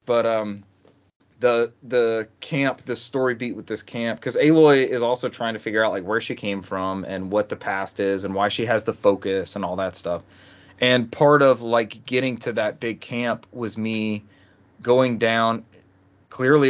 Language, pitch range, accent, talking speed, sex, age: English, 100-125 Hz, American, 190 wpm, male, 30-49